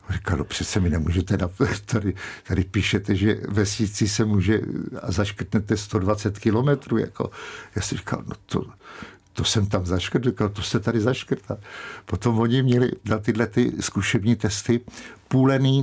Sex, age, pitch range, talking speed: male, 50-69, 100-125 Hz, 150 wpm